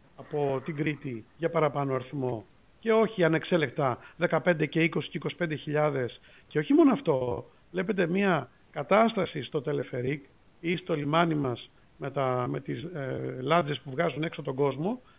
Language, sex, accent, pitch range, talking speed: Greek, male, native, 155-220 Hz, 145 wpm